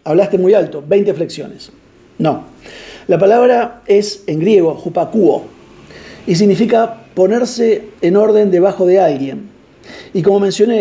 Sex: male